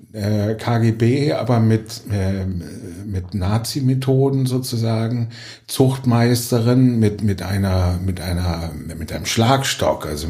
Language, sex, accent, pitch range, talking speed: German, male, German, 95-115 Hz, 95 wpm